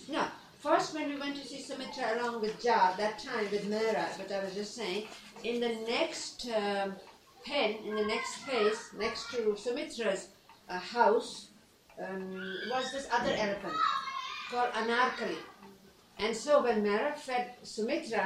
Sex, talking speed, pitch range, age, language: female, 155 wpm, 210-285 Hz, 50-69, English